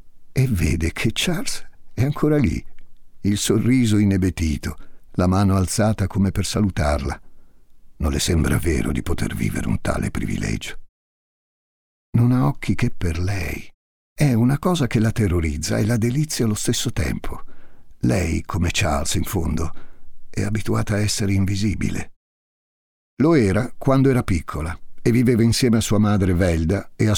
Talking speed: 150 wpm